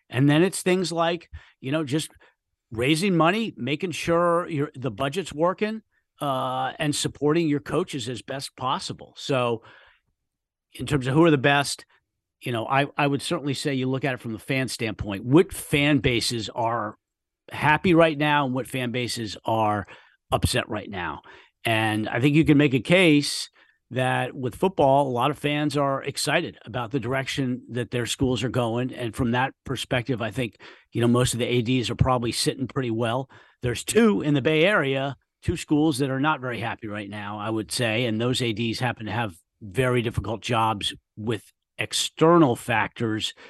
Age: 50-69